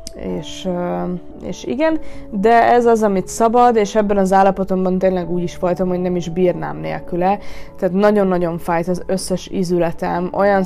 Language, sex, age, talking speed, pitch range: Hungarian, female, 20-39, 160 wpm, 170-200 Hz